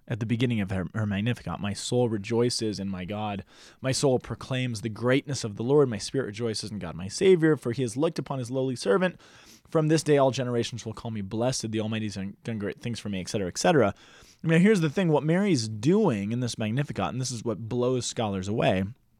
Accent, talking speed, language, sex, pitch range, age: American, 225 wpm, English, male, 110-145 Hz, 20-39